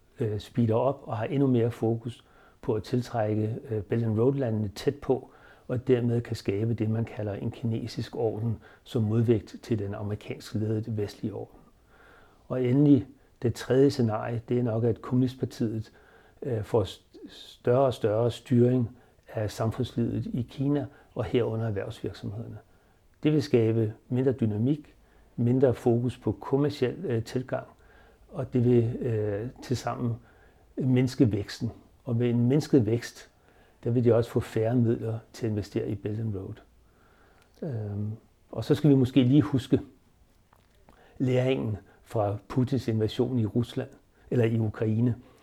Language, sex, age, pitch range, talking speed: Danish, male, 60-79, 110-125 Hz, 145 wpm